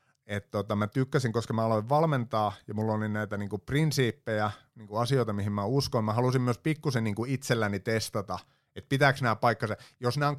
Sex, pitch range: male, 105-130 Hz